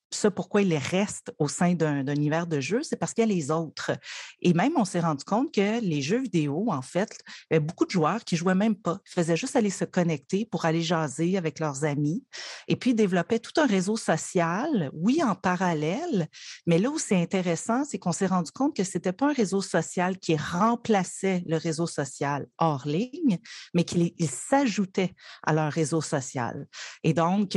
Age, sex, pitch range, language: 40-59, female, 155-200 Hz, French